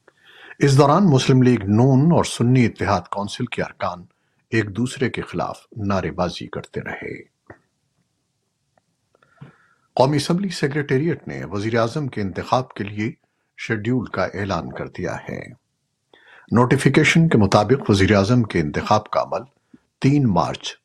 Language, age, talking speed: Urdu, 50-69, 125 wpm